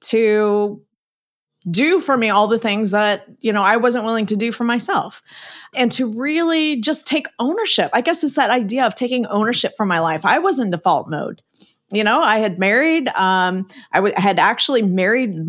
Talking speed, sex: 195 wpm, female